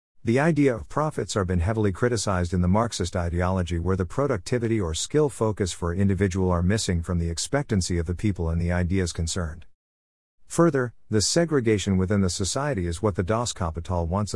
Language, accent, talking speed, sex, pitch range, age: English, American, 185 wpm, male, 85-110 Hz, 50-69